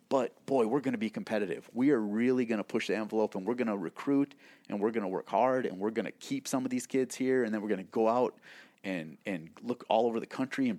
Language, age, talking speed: English, 30-49, 285 wpm